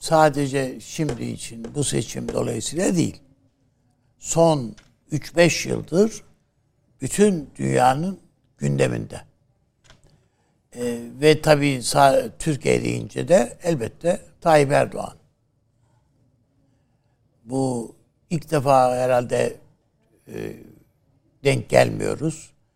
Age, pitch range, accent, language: 60-79, 115-150 Hz, native, Turkish